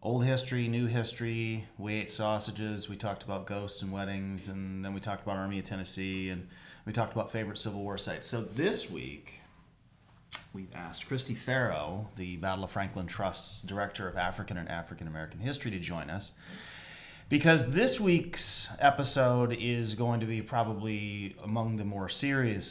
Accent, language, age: American, English, 30-49